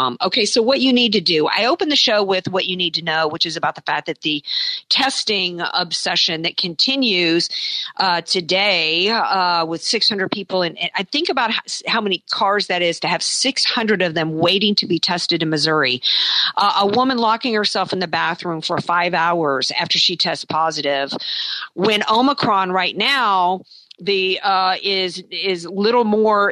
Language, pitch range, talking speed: English, 170-220 Hz, 185 wpm